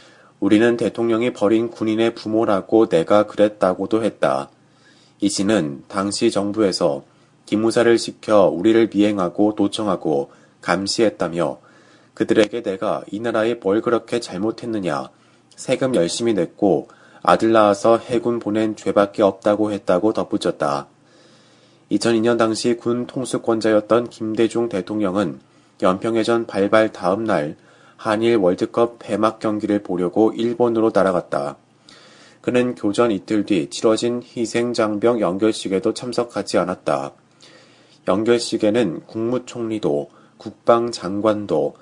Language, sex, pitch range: Korean, male, 105-120 Hz